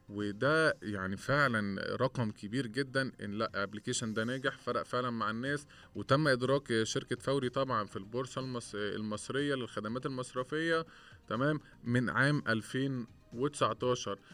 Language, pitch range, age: Arabic, 110-135 Hz, 20-39